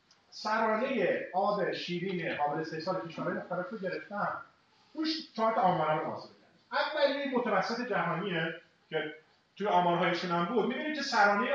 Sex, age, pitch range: male, 30-49, 175-225 Hz